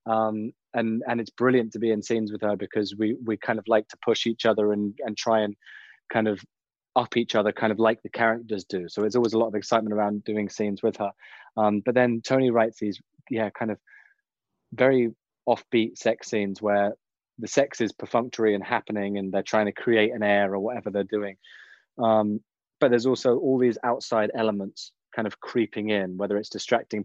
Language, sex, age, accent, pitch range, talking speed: English, male, 20-39, British, 100-115 Hz, 210 wpm